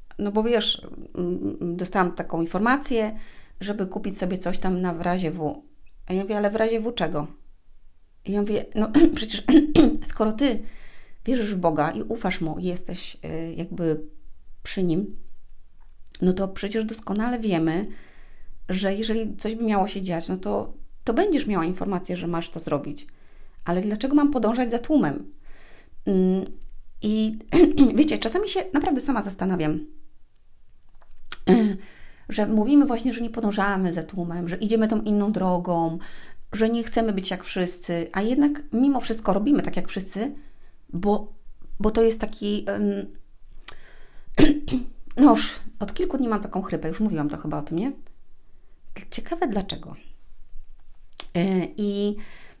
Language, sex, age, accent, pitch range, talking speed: Polish, female, 30-49, native, 170-225 Hz, 145 wpm